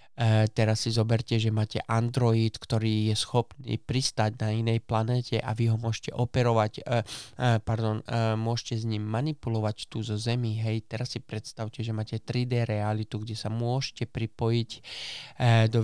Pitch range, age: 110-125 Hz, 20-39